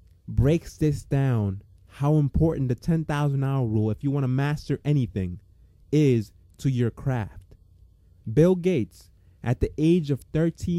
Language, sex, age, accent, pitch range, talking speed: English, male, 20-39, American, 110-150 Hz, 140 wpm